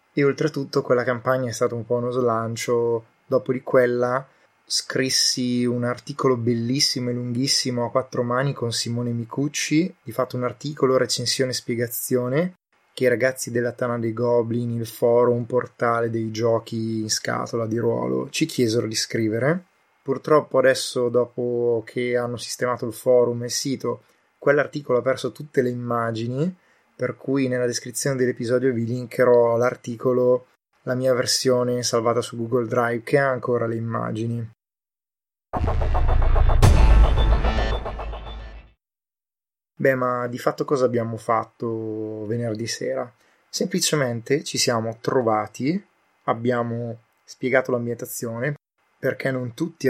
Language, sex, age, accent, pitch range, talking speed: Italian, male, 20-39, native, 115-130 Hz, 130 wpm